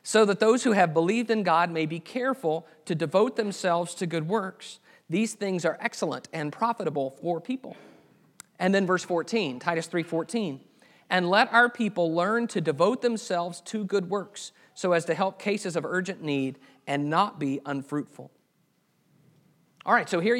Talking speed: 175 wpm